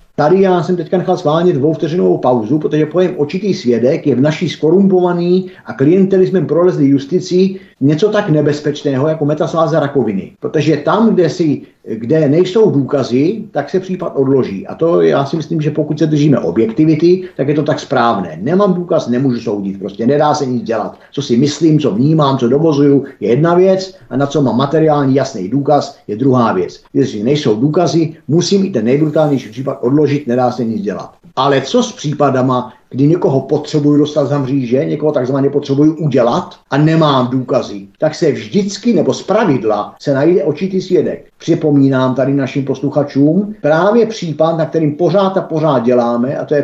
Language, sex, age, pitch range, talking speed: Czech, male, 50-69, 135-175 Hz, 175 wpm